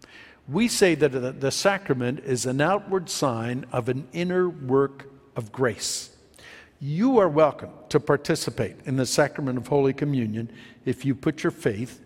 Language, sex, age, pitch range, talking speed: English, male, 60-79, 140-190 Hz, 155 wpm